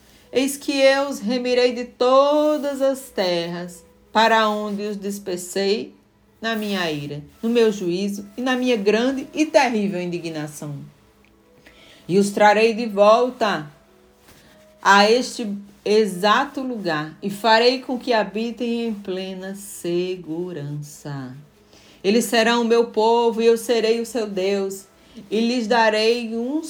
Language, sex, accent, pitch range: Portuguese, female, Brazilian, 185-240 Hz